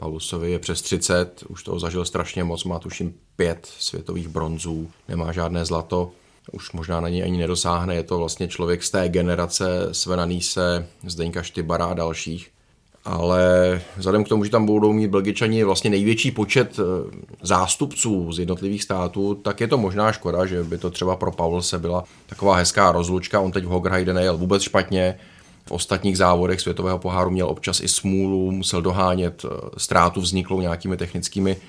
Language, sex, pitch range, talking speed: Czech, male, 85-95 Hz, 165 wpm